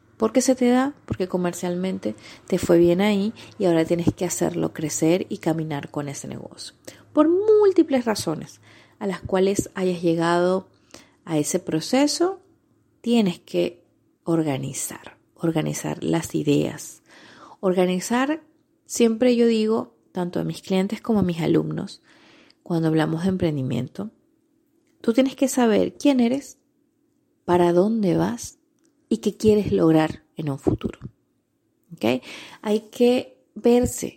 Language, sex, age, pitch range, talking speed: Spanish, female, 30-49, 165-250 Hz, 130 wpm